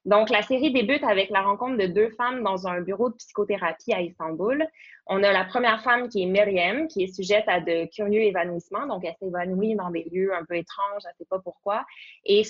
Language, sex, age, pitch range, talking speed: French, female, 20-39, 180-225 Hz, 220 wpm